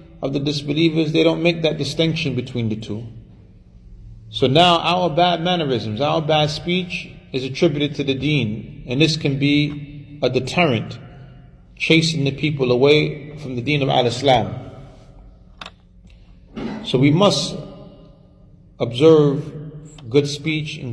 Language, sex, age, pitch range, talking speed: English, male, 30-49, 110-155 Hz, 130 wpm